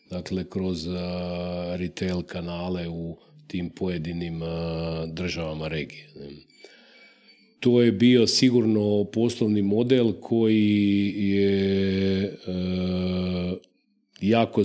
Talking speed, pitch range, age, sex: 75 wpm, 90-115 Hz, 40-59, male